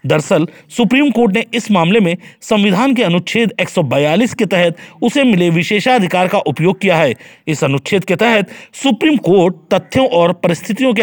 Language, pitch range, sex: Hindi, 170-225 Hz, male